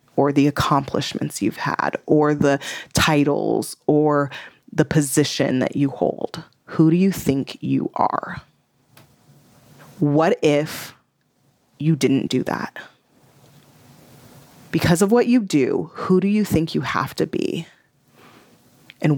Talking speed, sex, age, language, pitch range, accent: 125 wpm, female, 20-39, English, 145-170 Hz, American